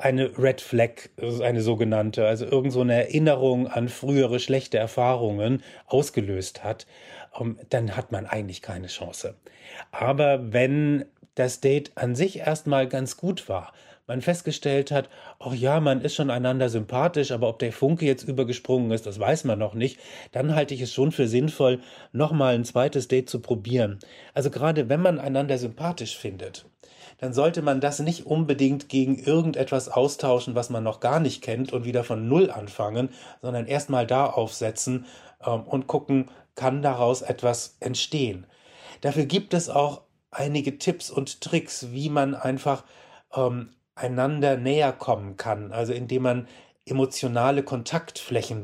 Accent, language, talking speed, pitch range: German, German, 160 wpm, 120-140 Hz